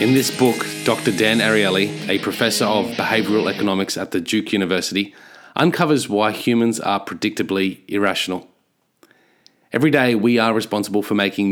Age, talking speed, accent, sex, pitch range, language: 30-49, 145 wpm, Australian, male, 95-115 Hz, English